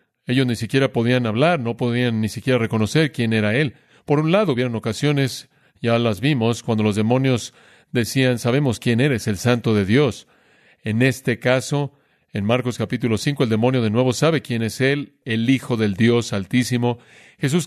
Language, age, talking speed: Spanish, 40-59, 180 wpm